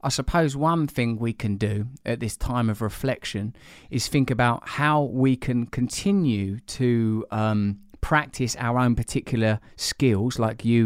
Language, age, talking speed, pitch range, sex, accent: English, 20-39, 155 wpm, 110-130 Hz, male, British